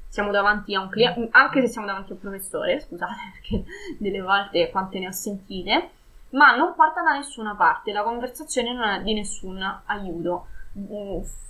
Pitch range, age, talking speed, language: 200-270 Hz, 20-39, 170 wpm, Italian